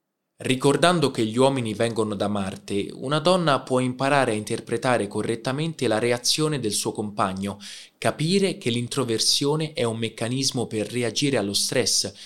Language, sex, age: Italian, male, 20-39